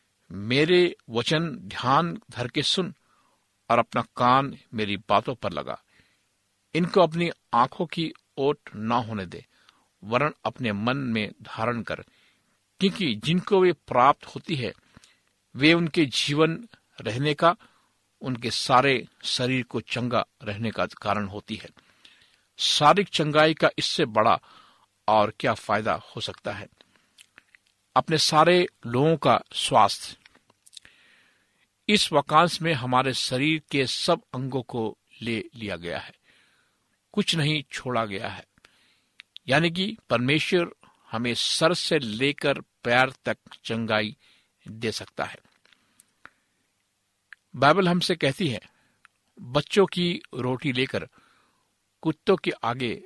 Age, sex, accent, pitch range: 60-79, male, native, 115-165 Hz